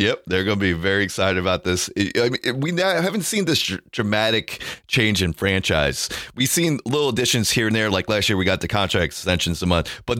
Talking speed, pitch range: 225 wpm, 95-120 Hz